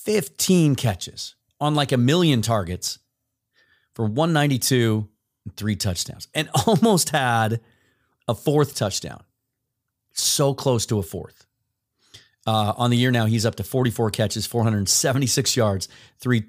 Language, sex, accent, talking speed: English, male, American, 130 wpm